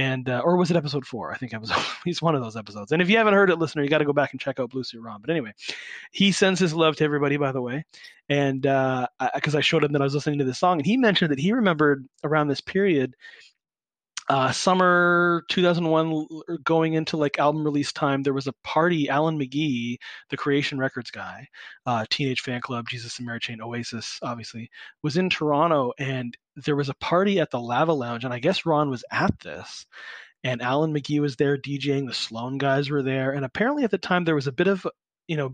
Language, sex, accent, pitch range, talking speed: English, male, American, 130-160 Hz, 240 wpm